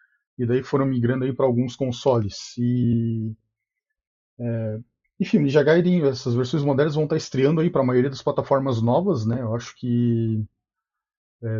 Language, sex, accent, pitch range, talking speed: Portuguese, male, Brazilian, 120-150 Hz, 160 wpm